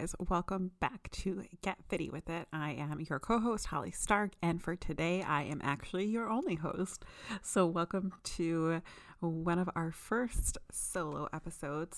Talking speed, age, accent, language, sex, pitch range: 155 wpm, 30-49, American, English, female, 160-195 Hz